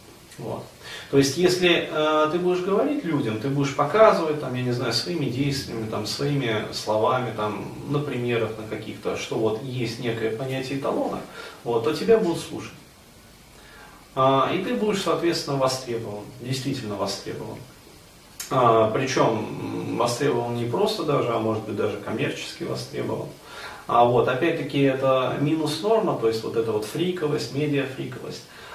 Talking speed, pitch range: 145 wpm, 115-145 Hz